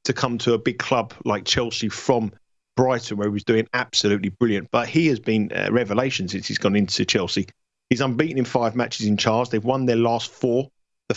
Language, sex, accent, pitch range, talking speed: English, male, British, 110-135 Hz, 215 wpm